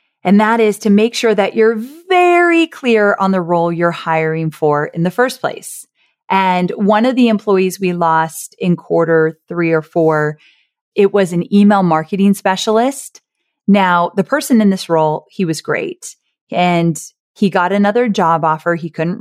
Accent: American